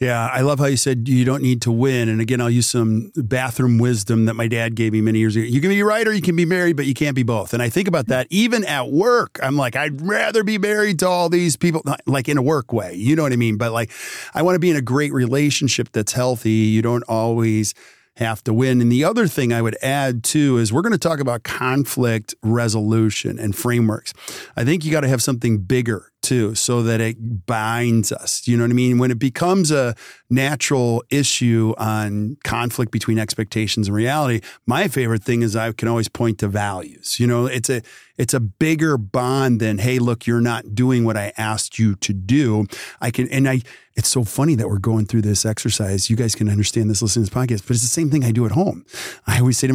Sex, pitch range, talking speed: male, 115-140 Hz, 240 wpm